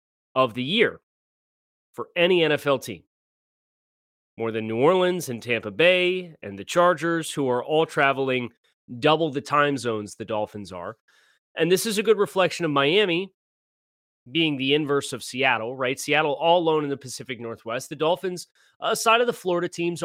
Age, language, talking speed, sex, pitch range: 30-49, English, 170 wpm, male, 125-175 Hz